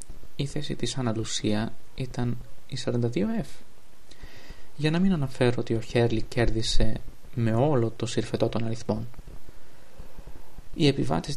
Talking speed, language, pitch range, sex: 120 wpm, English, 120-165 Hz, male